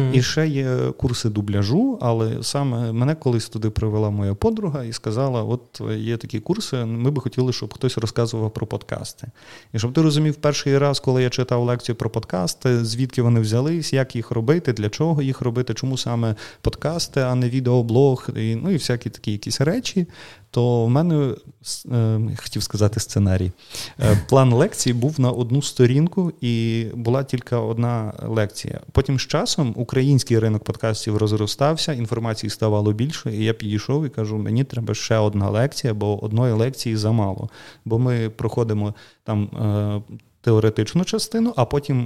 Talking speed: 165 wpm